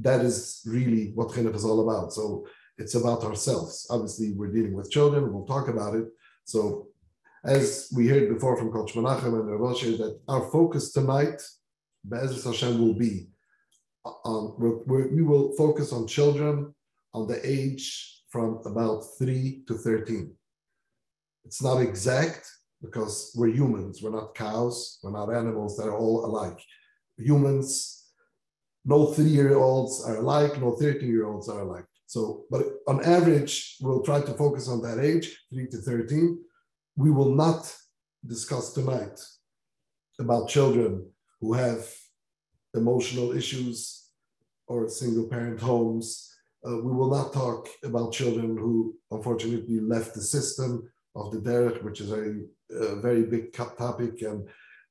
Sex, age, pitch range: male, 50-69, 115-135 Hz